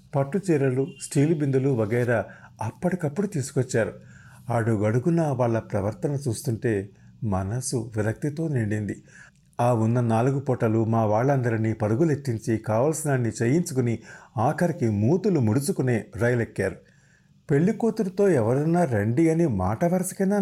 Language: Telugu